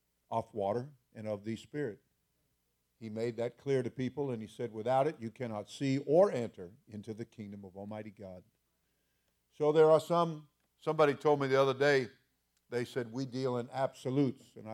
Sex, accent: male, American